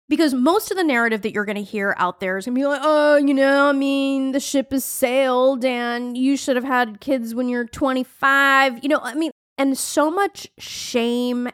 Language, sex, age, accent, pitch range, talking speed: English, female, 30-49, American, 215-290 Hz, 225 wpm